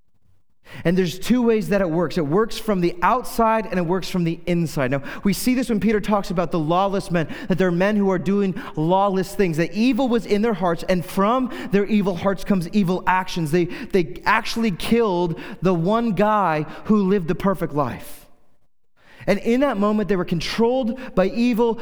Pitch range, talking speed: 165-210 Hz, 200 wpm